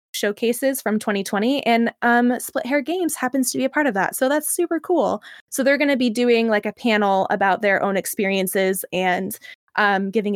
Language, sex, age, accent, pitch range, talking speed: English, female, 20-39, American, 195-250 Hz, 205 wpm